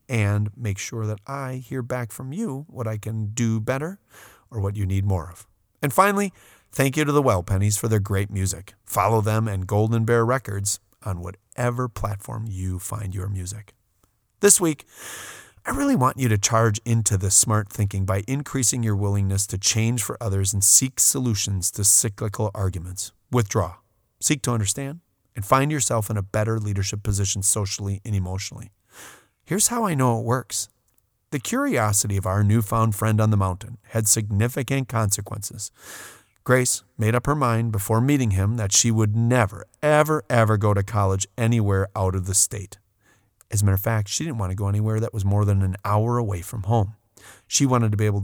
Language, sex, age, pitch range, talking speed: English, male, 30-49, 100-120 Hz, 185 wpm